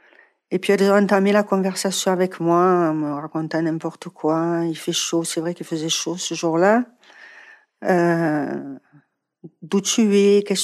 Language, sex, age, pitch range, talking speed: French, female, 50-69, 170-210 Hz, 160 wpm